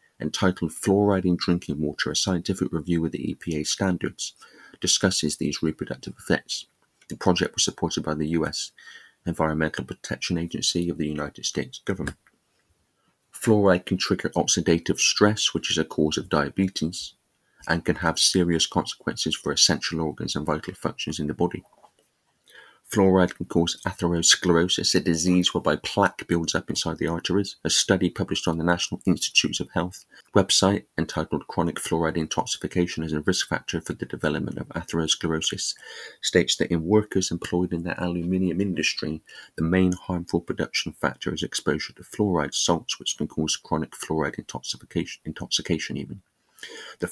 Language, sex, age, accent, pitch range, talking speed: English, male, 30-49, British, 80-90 Hz, 155 wpm